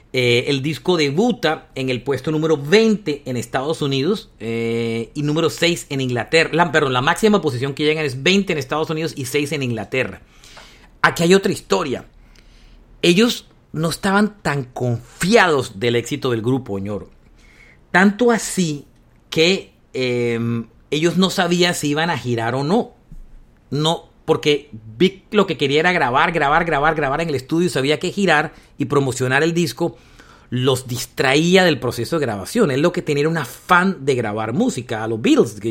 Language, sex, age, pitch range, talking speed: Spanish, male, 50-69, 125-170 Hz, 170 wpm